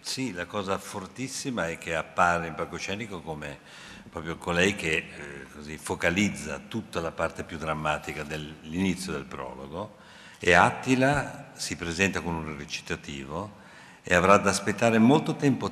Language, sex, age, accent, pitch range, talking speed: Italian, male, 50-69, native, 85-110 Hz, 140 wpm